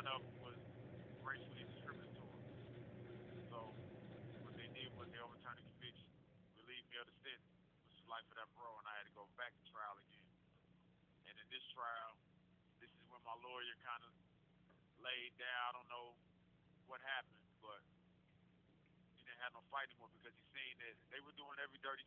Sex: male